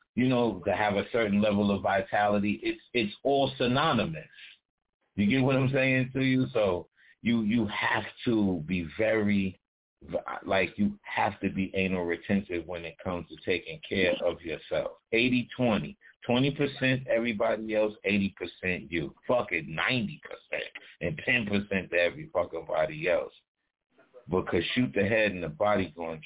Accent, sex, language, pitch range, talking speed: American, male, English, 95-115 Hz, 160 wpm